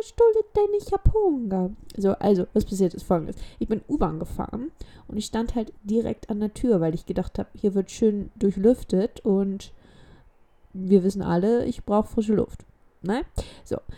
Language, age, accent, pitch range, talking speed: German, 20-39, German, 195-240 Hz, 175 wpm